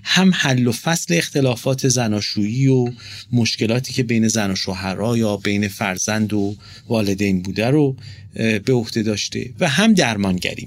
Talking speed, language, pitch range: 140 wpm, Persian, 105-145 Hz